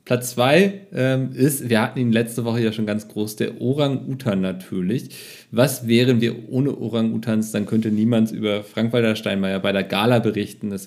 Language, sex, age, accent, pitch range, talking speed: German, male, 40-59, German, 105-125 Hz, 175 wpm